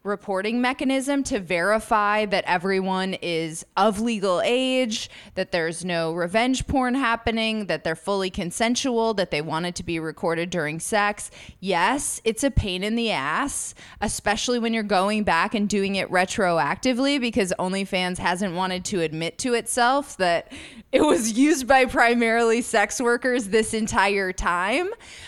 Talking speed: 150 wpm